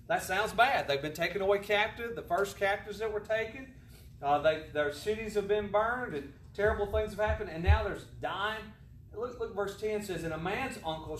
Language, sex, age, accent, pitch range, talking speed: English, male, 40-59, American, 140-195 Hz, 210 wpm